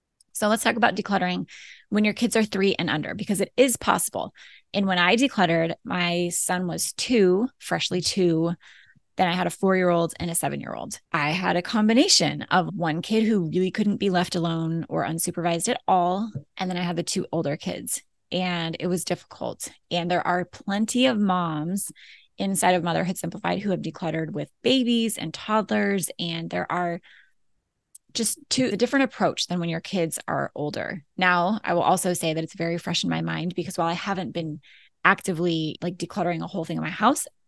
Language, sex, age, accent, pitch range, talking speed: English, female, 20-39, American, 170-200 Hz, 190 wpm